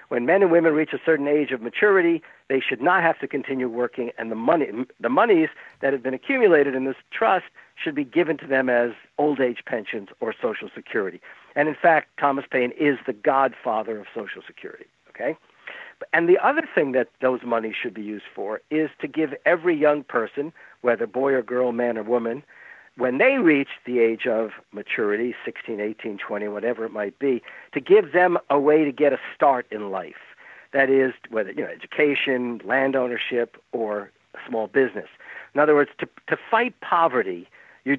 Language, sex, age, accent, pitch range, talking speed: English, male, 60-79, American, 120-170 Hz, 190 wpm